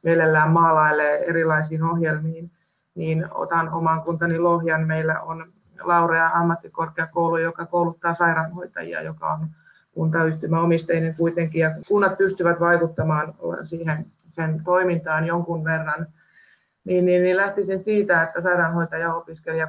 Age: 30-49